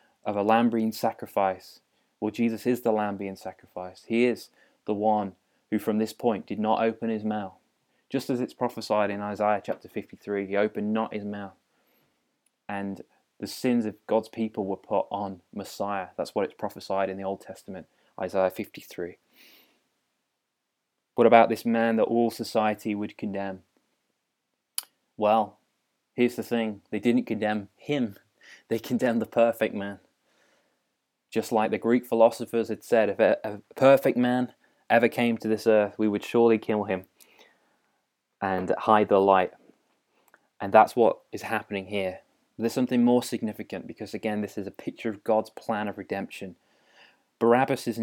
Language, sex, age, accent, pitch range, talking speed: English, male, 20-39, British, 100-115 Hz, 155 wpm